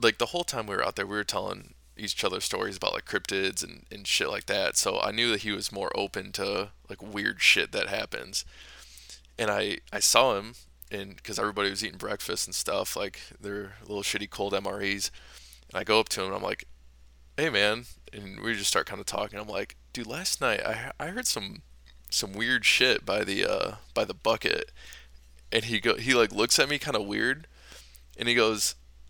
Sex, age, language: male, 20-39, English